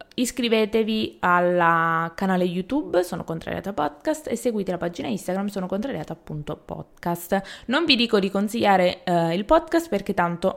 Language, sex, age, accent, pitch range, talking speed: Italian, female, 20-39, native, 180-225 Hz, 150 wpm